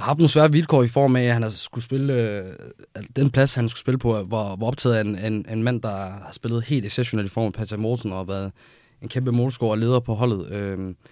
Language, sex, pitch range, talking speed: Danish, male, 105-125 Hz, 265 wpm